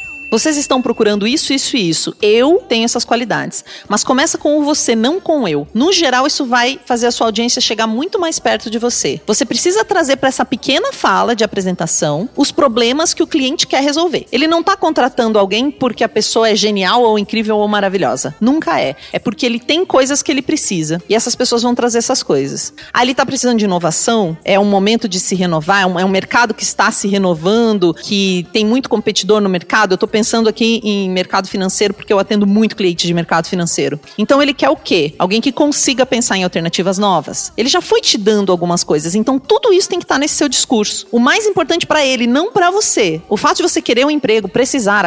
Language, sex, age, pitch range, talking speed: Portuguese, female, 40-59, 195-285 Hz, 220 wpm